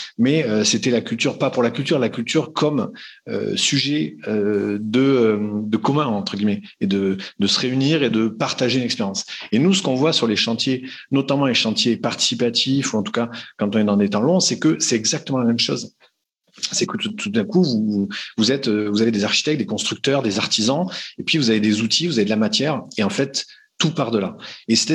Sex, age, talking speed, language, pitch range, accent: male, 40-59, 225 wpm, French, 105-140 Hz, French